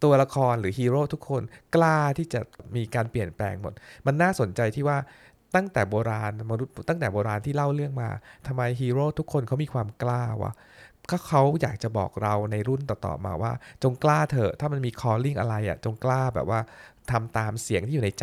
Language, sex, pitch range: Thai, male, 110-140 Hz